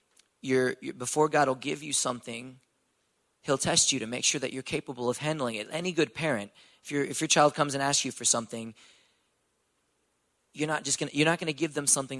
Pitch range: 130-165 Hz